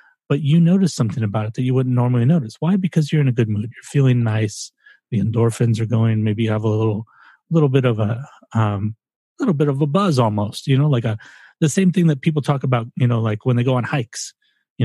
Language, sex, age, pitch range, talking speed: English, male, 30-49, 110-150 Hz, 245 wpm